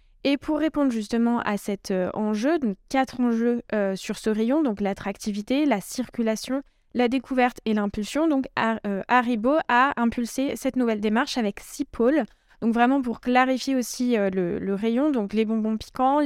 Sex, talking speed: female, 170 wpm